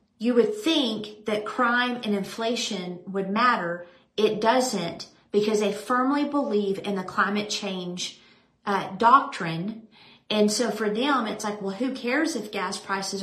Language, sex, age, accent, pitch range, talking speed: English, female, 40-59, American, 195-235 Hz, 150 wpm